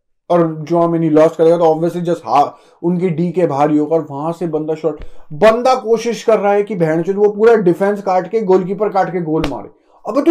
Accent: native